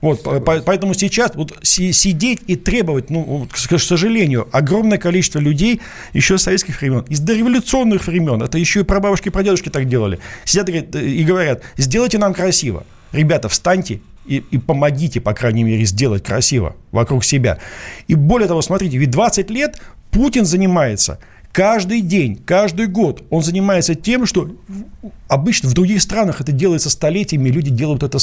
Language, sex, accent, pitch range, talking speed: Russian, male, native, 135-195 Hz, 155 wpm